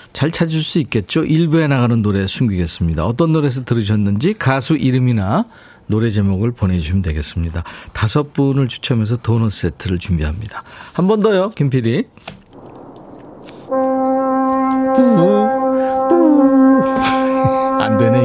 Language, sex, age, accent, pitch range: Korean, male, 40-59, native, 105-170 Hz